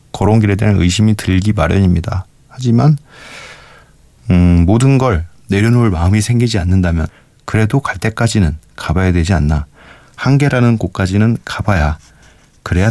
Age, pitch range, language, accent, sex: 40-59, 85-110 Hz, Korean, native, male